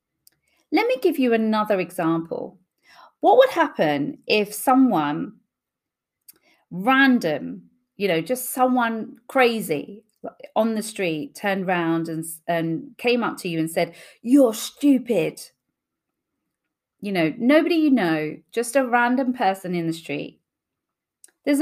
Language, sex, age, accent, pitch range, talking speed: English, female, 40-59, British, 190-270 Hz, 125 wpm